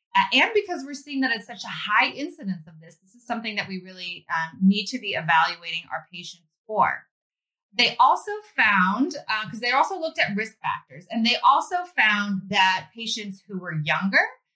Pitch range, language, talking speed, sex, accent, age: 180-240 Hz, English, 190 wpm, female, American, 20-39